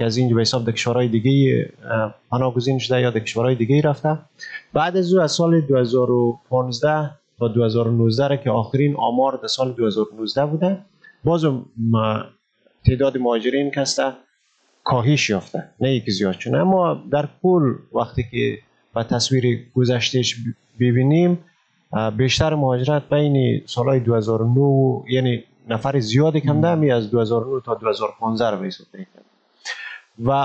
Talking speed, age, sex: 125 wpm, 30-49, male